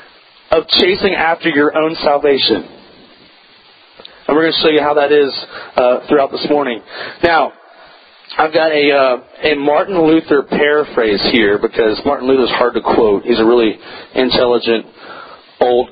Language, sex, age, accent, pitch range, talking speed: English, male, 40-59, American, 145-175 Hz, 155 wpm